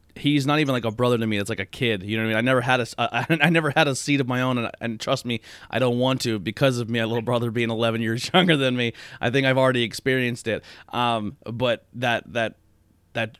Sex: male